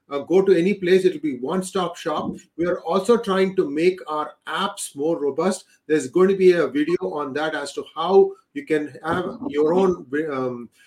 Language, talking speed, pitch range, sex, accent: English, 200 wpm, 160-210 Hz, male, Indian